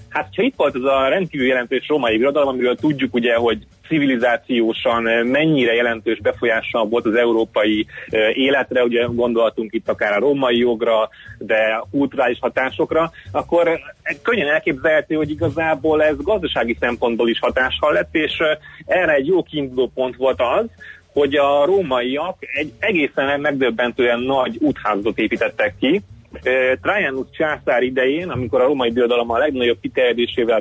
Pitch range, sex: 120-150 Hz, male